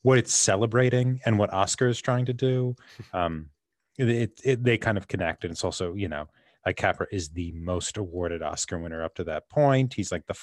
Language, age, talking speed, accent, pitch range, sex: English, 30-49, 215 wpm, American, 95-130 Hz, male